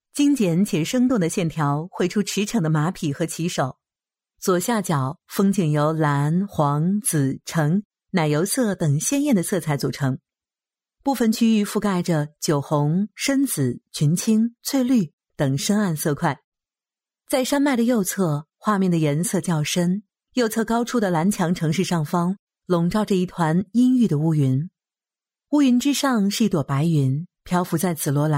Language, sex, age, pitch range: English, female, 50-69, 155-215 Hz